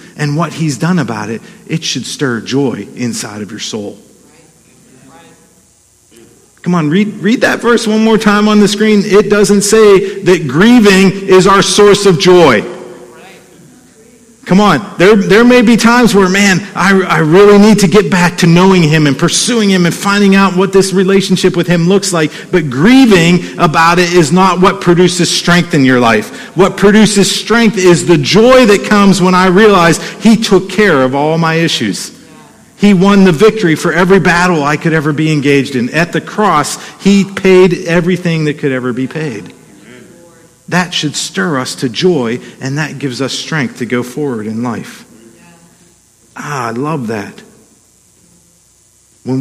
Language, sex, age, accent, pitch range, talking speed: English, male, 50-69, American, 145-200 Hz, 175 wpm